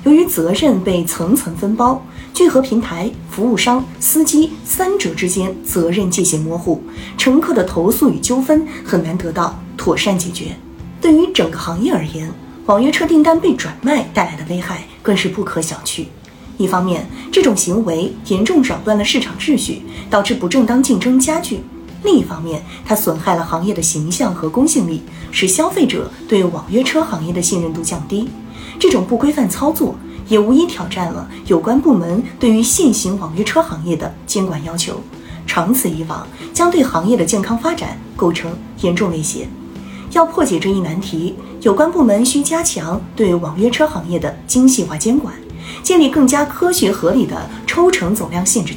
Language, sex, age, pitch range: Chinese, female, 20-39, 170-270 Hz